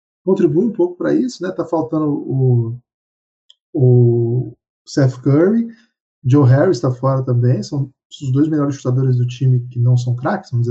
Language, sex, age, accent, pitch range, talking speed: Portuguese, male, 20-39, Brazilian, 130-170 Hz, 170 wpm